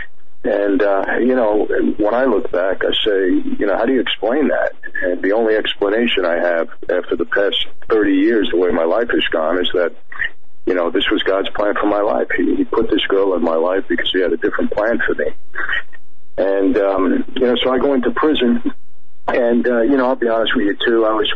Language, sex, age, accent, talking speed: English, male, 50-69, American, 230 wpm